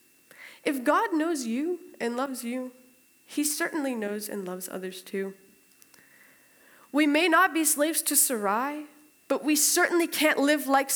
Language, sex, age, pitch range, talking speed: English, female, 10-29, 215-290 Hz, 150 wpm